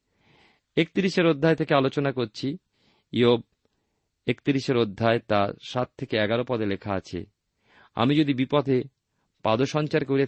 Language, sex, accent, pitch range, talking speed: Bengali, male, native, 105-140 Hz, 115 wpm